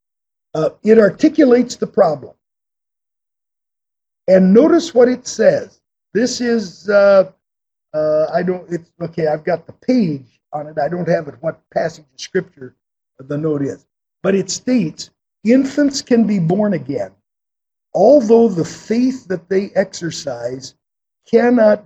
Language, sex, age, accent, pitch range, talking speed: English, male, 50-69, American, 160-200 Hz, 135 wpm